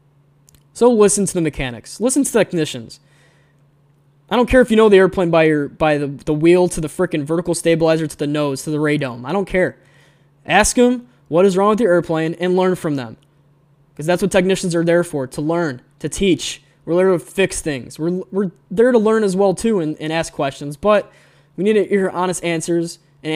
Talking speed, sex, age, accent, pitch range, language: 215 wpm, male, 10-29, American, 145-170 Hz, English